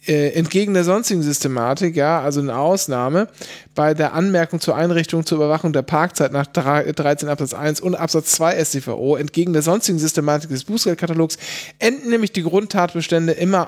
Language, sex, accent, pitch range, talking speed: German, male, German, 150-190 Hz, 160 wpm